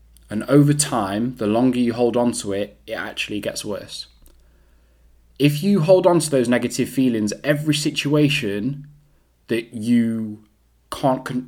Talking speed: 140 wpm